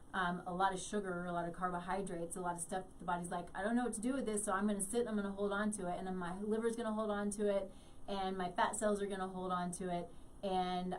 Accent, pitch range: American, 185-220 Hz